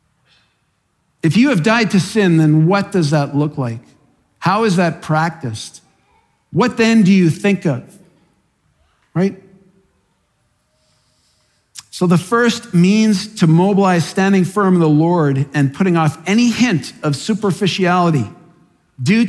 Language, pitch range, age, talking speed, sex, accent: English, 155-205 Hz, 50-69, 130 wpm, male, American